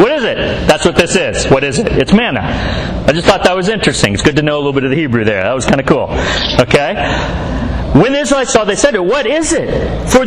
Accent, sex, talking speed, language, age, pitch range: American, male, 265 wpm, English, 40-59, 165-255 Hz